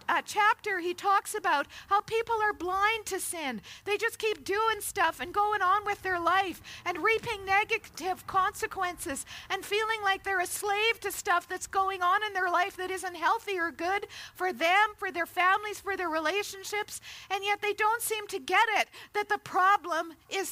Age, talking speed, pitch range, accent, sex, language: 50-69, 190 wpm, 355-415 Hz, American, female, English